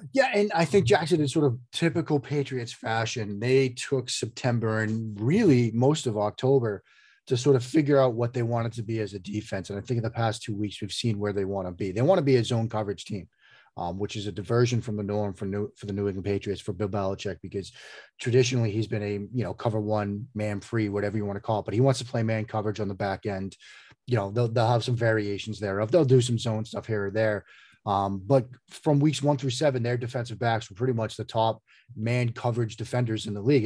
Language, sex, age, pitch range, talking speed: English, male, 30-49, 105-125 Hz, 245 wpm